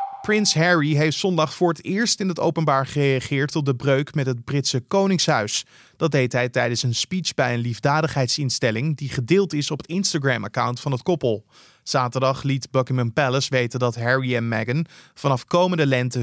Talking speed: 180 wpm